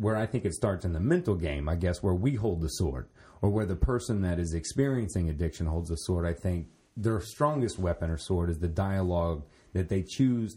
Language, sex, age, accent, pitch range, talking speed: English, male, 30-49, American, 85-110 Hz, 225 wpm